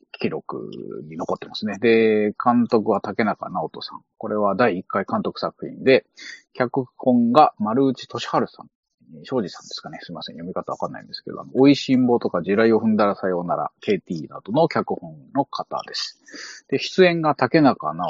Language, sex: Japanese, male